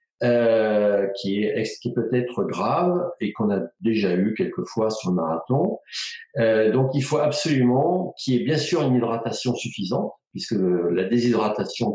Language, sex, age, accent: French, male, 50-69, French